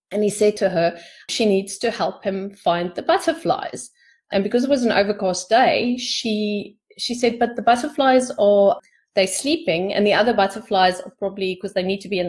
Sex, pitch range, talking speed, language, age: female, 190-235 Hz, 200 wpm, English, 30-49